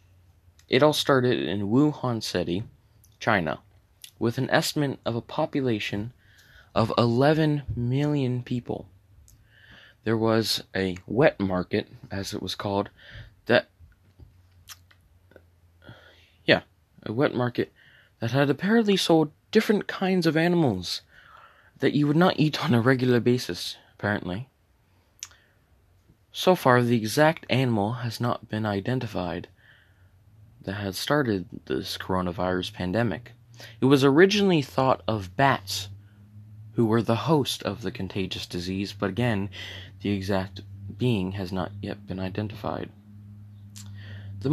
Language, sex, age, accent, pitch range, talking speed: English, male, 20-39, American, 95-125 Hz, 120 wpm